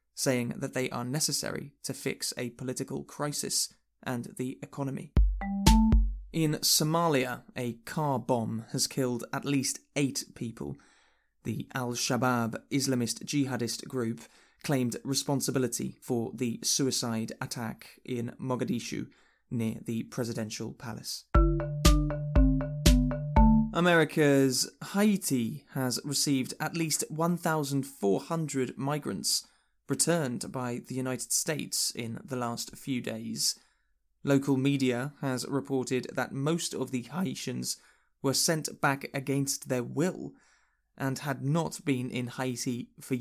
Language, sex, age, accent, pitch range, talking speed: English, male, 20-39, British, 120-145 Hz, 110 wpm